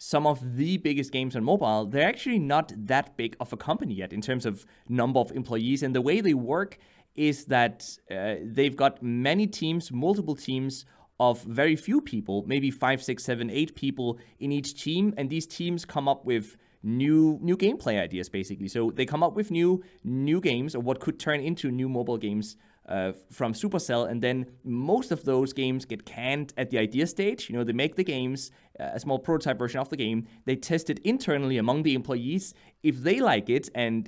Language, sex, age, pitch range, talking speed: English, male, 30-49, 115-150 Hz, 205 wpm